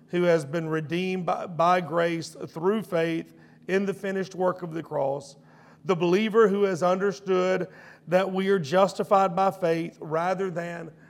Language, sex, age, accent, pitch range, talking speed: English, male, 50-69, American, 165-195 Hz, 155 wpm